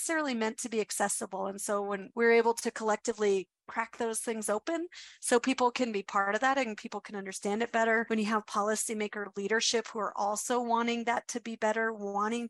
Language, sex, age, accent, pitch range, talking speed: English, female, 40-59, American, 200-230 Hz, 200 wpm